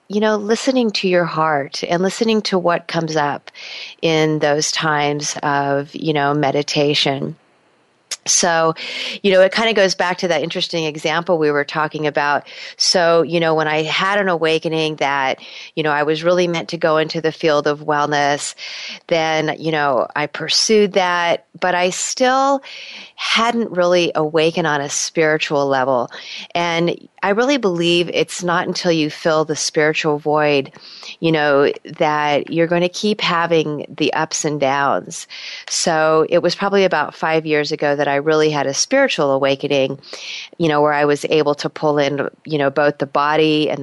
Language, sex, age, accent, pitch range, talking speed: English, female, 30-49, American, 145-175 Hz, 175 wpm